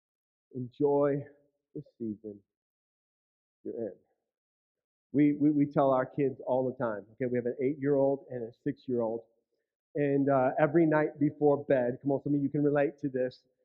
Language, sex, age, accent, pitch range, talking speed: English, male, 40-59, American, 135-180 Hz, 160 wpm